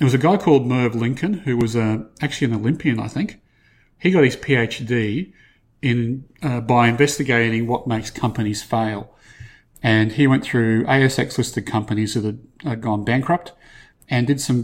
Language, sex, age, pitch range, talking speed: English, male, 40-59, 110-130 Hz, 165 wpm